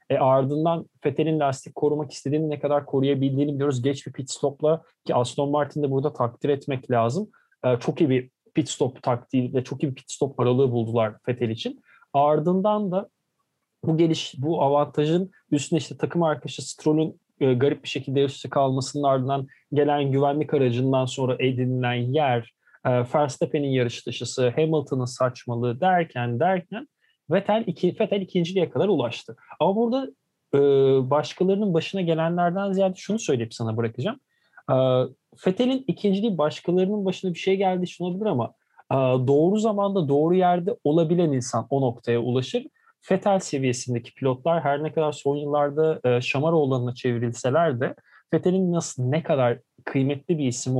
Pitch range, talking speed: 130-170 Hz, 150 wpm